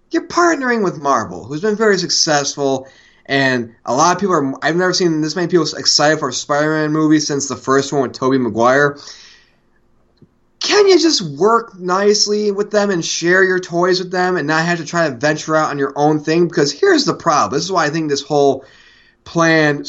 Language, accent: English, American